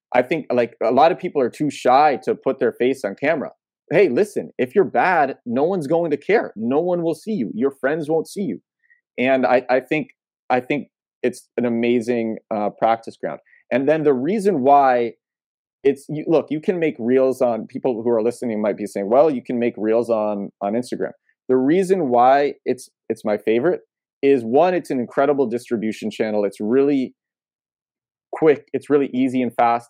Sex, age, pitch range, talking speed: male, 30-49, 115-150 Hz, 195 wpm